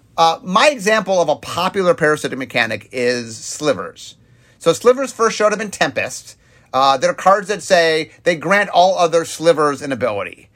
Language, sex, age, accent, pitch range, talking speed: English, male, 30-49, American, 130-210 Hz, 165 wpm